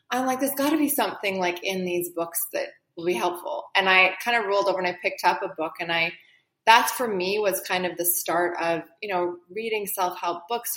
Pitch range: 175-225 Hz